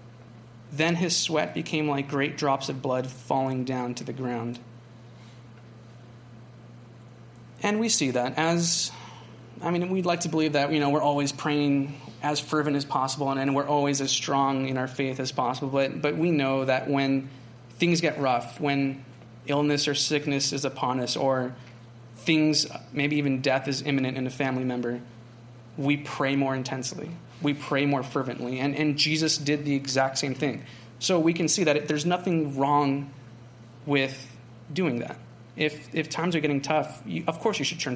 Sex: male